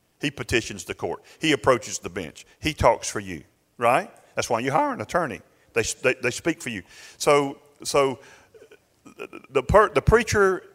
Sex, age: male, 40-59